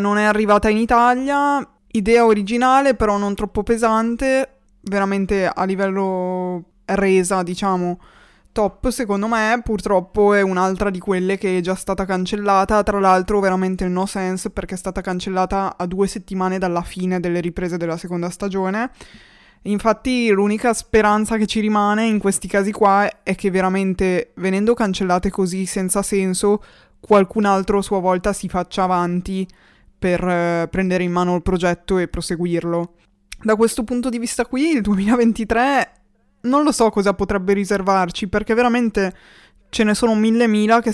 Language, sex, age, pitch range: Italian, female, 20-39, 190-220 Hz